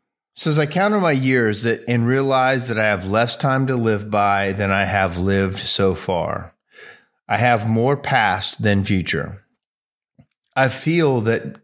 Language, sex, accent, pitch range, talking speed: English, male, American, 100-120 Hz, 165 wpm